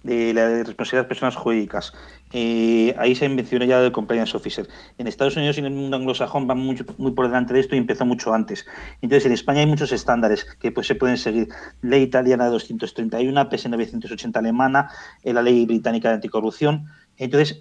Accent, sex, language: Spanish, male, Spanish